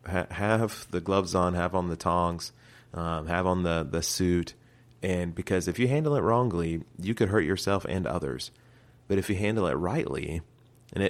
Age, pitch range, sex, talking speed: 30-49, 85-100 Hz, male, 185 wpm